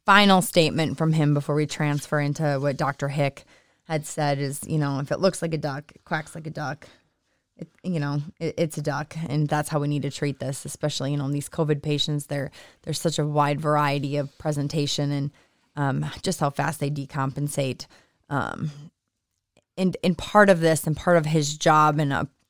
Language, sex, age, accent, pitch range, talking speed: English, female, 20-39, American, 145-160 Hz, 205 wpm